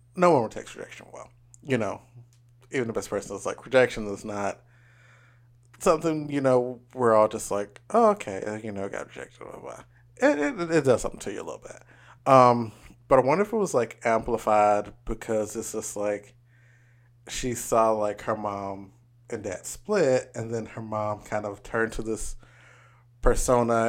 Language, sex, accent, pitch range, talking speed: English, male, American, 110-125 Hz, 180 wpm